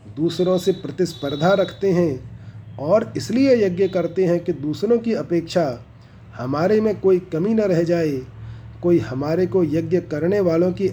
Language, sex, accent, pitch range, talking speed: Hindi, male, native, 135-185 Hz, 155 wpm